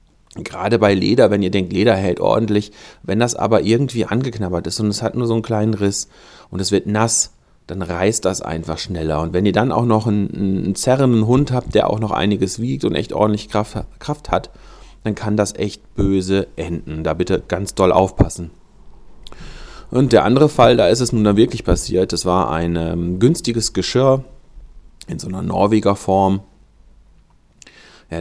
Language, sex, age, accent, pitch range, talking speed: German, male, 30-49, German, 90-110 Hz, 185 wpm